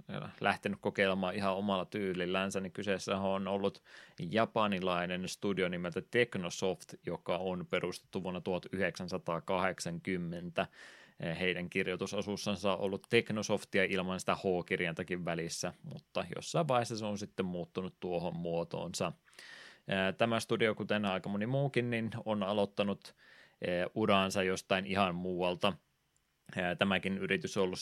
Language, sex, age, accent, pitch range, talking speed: Finnish, male, 20-39, native, 90-105 Hz, 115 wpm